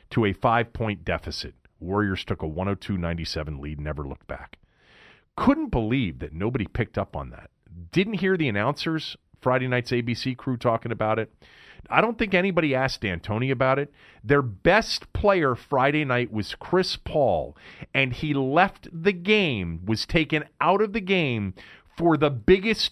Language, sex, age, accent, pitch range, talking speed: English, male, 40-59, American, 95-150 Hz, 160 wpm